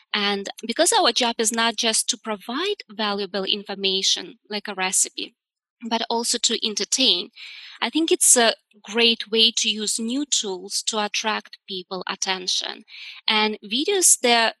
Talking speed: 145 wpm